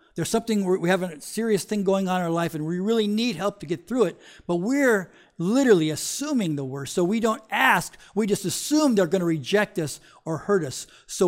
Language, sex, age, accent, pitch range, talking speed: English, male, 50-69, American, 170-230 Hz, 230 wpm